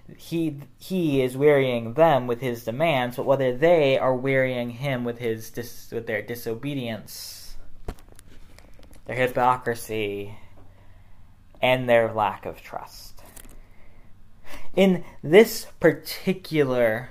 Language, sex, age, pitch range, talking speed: English, male, 20-39, 100-140 Hz, 105 wpm